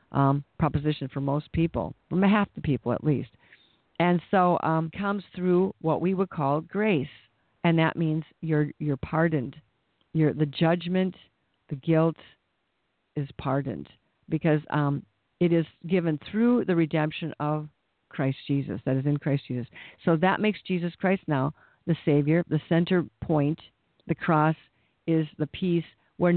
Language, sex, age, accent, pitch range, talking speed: English, female, 50-69, American, 145-170 Hz, 150 wpm